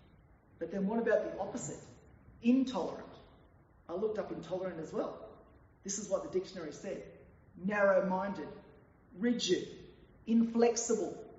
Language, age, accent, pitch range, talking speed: English, 30-49, Australian, 195-270 Hz, 115 wpm